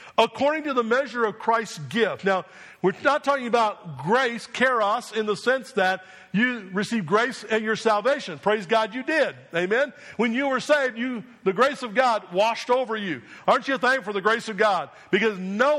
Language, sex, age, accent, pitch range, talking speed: English, male, 50-69, American, 195-250 Hz, 195 wpm